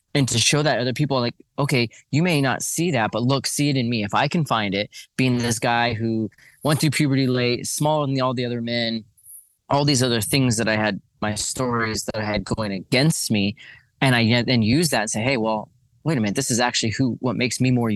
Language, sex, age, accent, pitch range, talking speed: English, male, 20-39, American, 110-130 Hz, 250 wpm